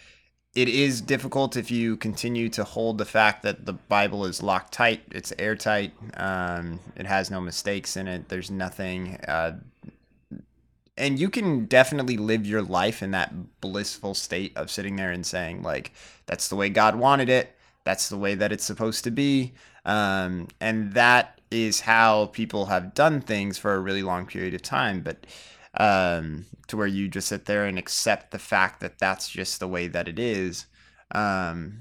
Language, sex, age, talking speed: English, male, 20-39, 180 wpm